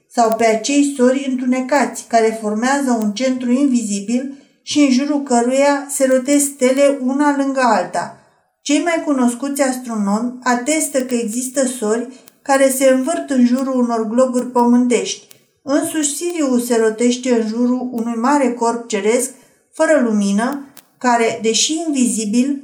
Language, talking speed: Romanian, 135 wpm